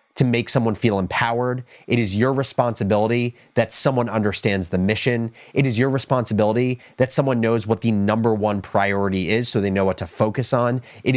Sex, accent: male, American